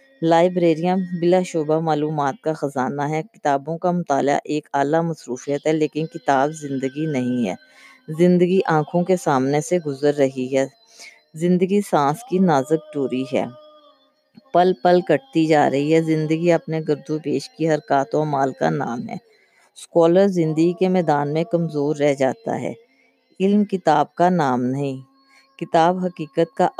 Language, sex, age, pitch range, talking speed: Urdu, female, 20-39, 145-175 Hz, 150 wpm